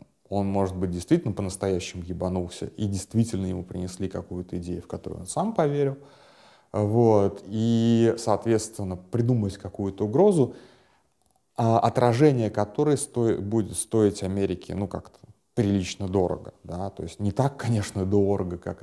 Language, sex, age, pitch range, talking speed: Russian, male, 30-49, 90-105 Hz, 120 wpm